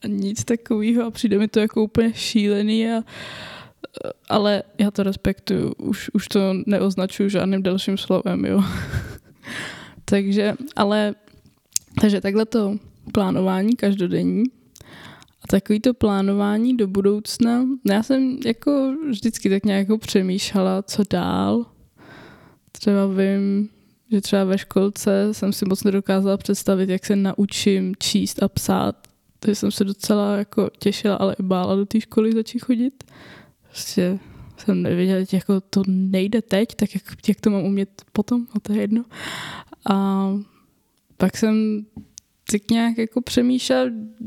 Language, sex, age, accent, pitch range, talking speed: Czech, female, 10-29, native, 195-225 Hz, 135 wpm